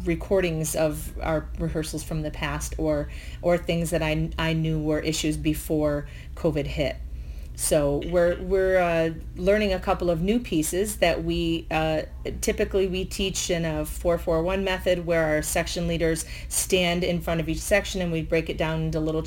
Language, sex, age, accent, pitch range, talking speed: English, female, 30-49, American, 155-180 Hz, 180 wpm